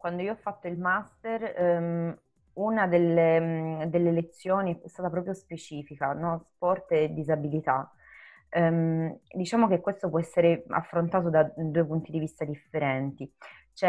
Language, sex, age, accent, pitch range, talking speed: Italian, female, 20-39, native, 140-165 Hz, 145 wpm